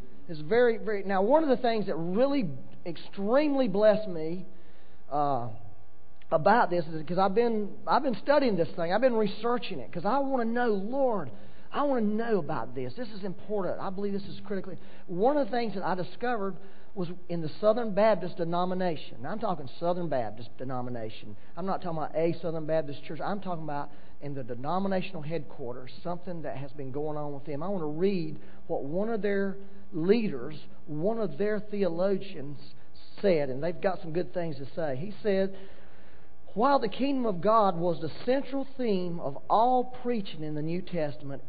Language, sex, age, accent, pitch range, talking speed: English, male, 40-59, American, 145-210 Hz, 190 wpm